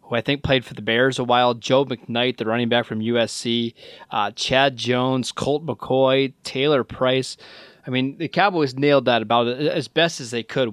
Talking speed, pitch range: 195 wpm, 125-145 Hz